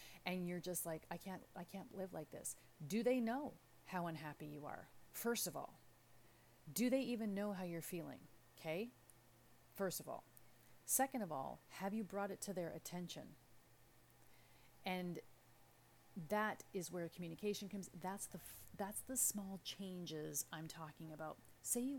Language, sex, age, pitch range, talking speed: English, female, 30-49, 155-195 Hz, 160 wpm